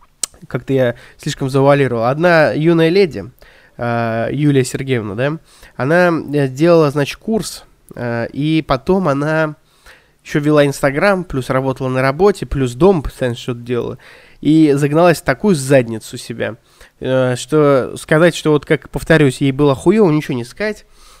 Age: 20-39